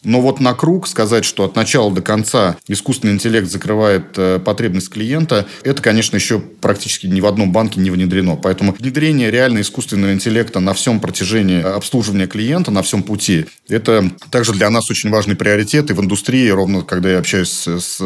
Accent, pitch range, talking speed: native, 95-120 Hz, 185 wpm